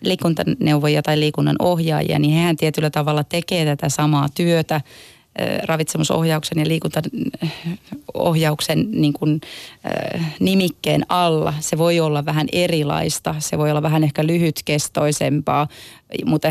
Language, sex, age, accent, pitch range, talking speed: Finnish, female, 30-49, native, 145-160 Hz, 110 wpm